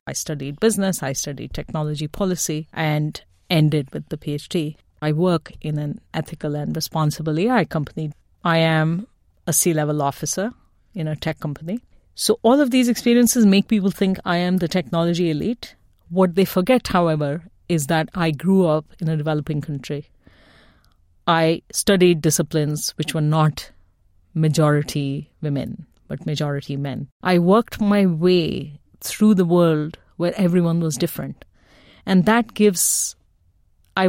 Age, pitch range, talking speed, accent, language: 30-49, 150-185 Hz, 145 wpm, Indian, English